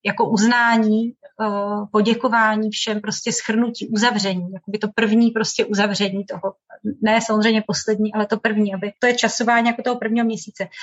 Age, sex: 30-49, female